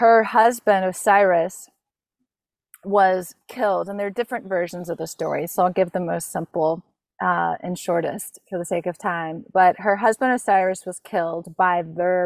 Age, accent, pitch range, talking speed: 30-49, American, 180-210 Hz, 170 wpm